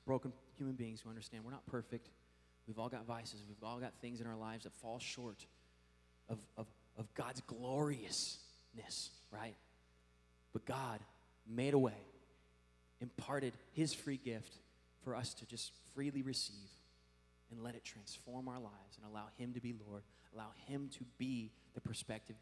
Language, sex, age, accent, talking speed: English, male, 30-49, American, 160 wpm